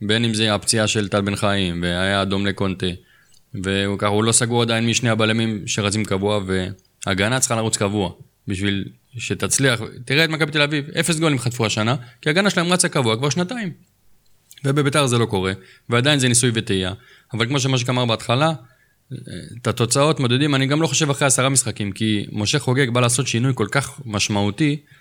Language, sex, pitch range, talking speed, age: Hebrew, male, 105-145 Hz, 180 wpm, 20-39